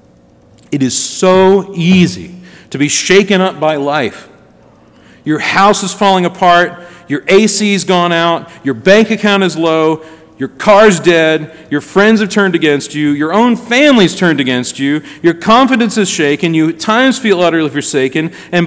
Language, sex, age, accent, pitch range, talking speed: English, male, 40-59, American, 130-195 Hz, 160 wpm